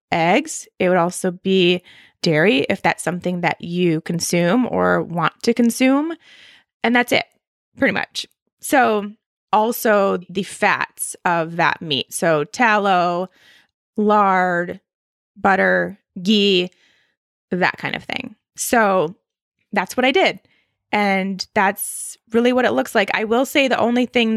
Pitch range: 180-230 Hz